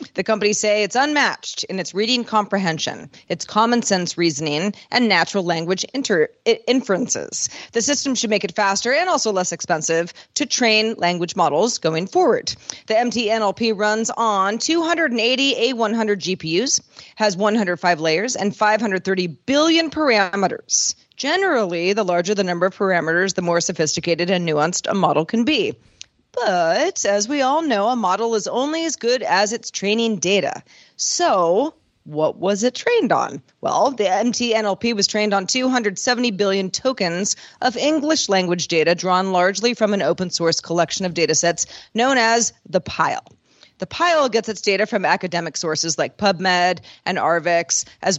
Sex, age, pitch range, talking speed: female, 40-59, 180-240 Hz, 155 wpm